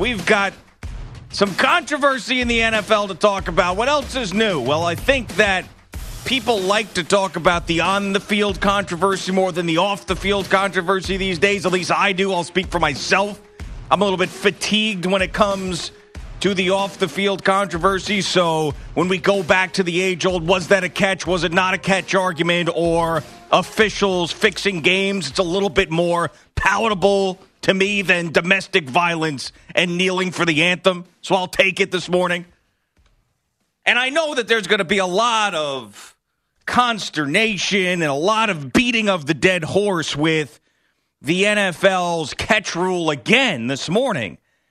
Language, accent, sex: English, American, male